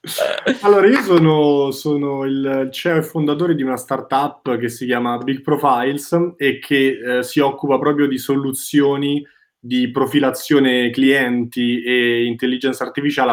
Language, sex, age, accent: Italian, male, 20-39, native